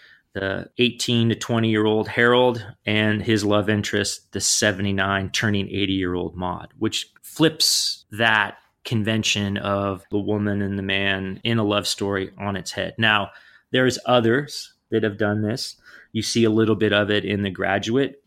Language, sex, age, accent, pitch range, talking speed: English, male, 30-49, American, 100-115 Hz, 170 wpm